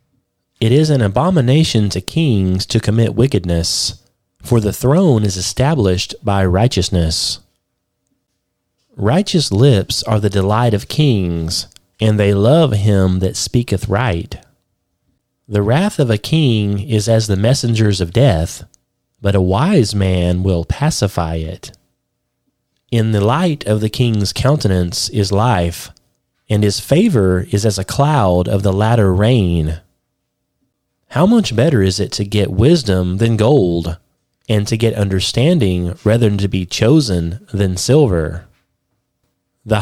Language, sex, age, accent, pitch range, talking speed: English, male, 30-49, American, 95-125 Hz, 135 wpm